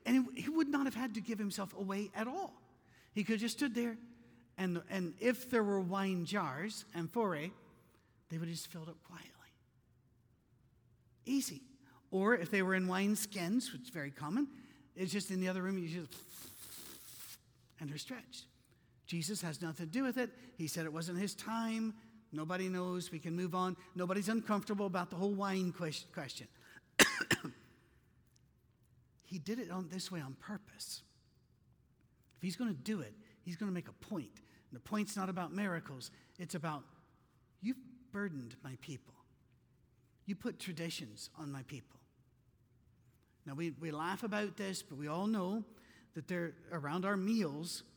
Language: English